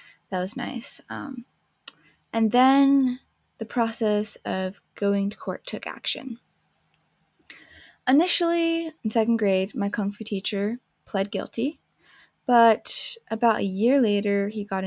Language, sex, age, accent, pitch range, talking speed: English, female, 20-39, American, 195-250 Hz, 125 wpm